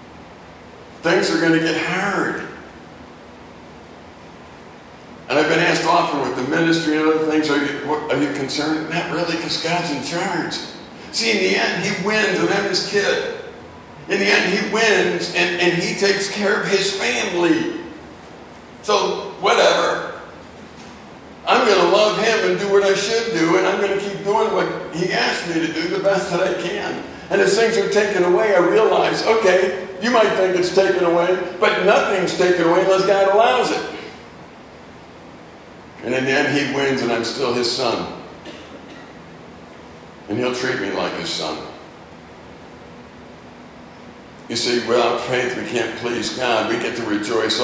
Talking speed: 170 wpm